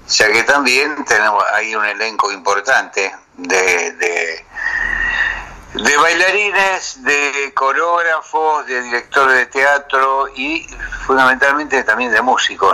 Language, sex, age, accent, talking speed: Spanish, male, 60-79, Argentinian, 115 wpm